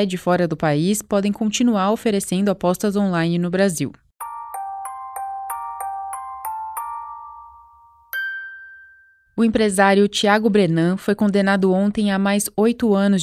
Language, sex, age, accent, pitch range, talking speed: Portuguese, female, 20-39, Brazilian, 180-210 Hz, 100 wpm